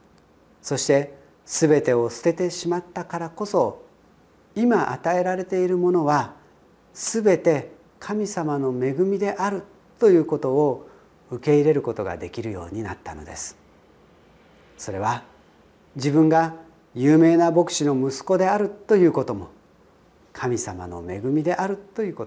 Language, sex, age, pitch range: Japanese, male, 40-59, 130-170 Hz